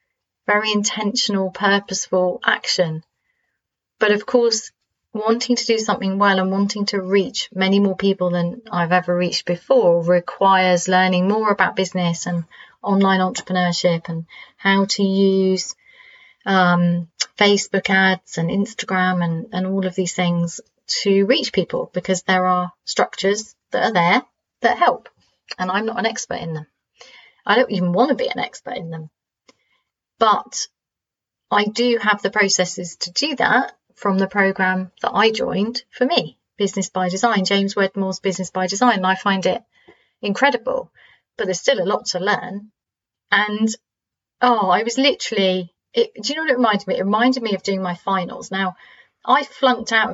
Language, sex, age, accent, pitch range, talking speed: English, female, 30-49, British, 185-225 Hz, 160 wpm